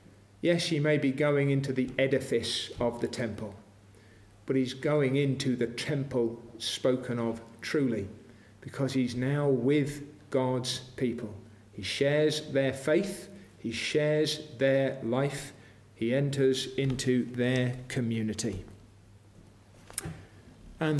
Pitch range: 120-165 Hz